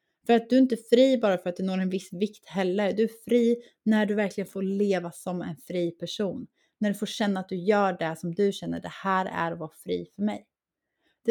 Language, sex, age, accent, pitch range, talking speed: Swedish, female, 30-49, native, 185-230 Hz, 250 wpm